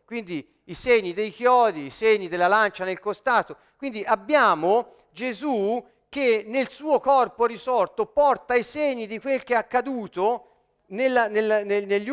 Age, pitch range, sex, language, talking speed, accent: 40-59, 210-275 Hz, male, Italian, 140 wpm, native